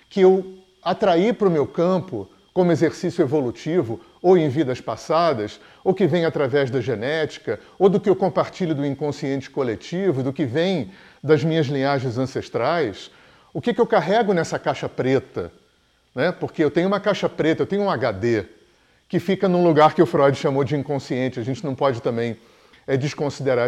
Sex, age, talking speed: male, 40-59, 180 wpm